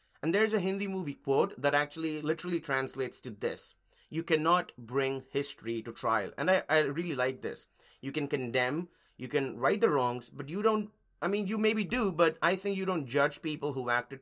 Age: 30-49